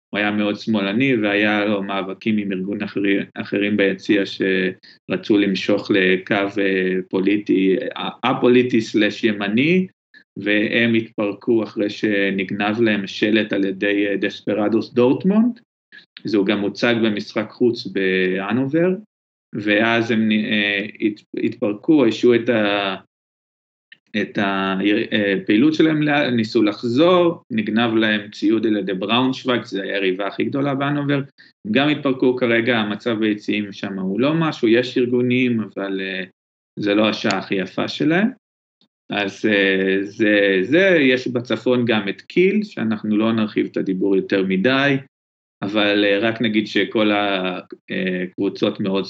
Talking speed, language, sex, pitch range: 115 wpm, Hebrew, male, 100-125 Hz